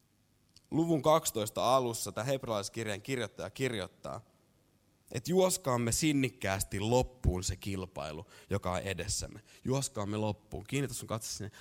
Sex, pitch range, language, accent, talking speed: male, 95-125 Hz, Finnish, native, 115 wpm